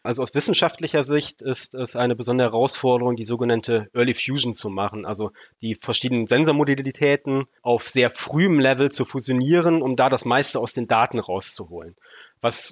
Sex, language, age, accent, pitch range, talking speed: male, German, 30-49, German, 120-150 Hz, 160 wpm